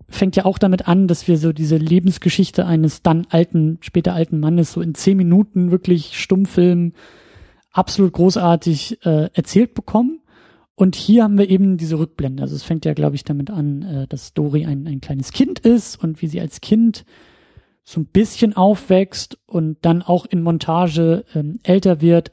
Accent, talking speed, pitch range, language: German, 180 wpm, 165-200 Hz, German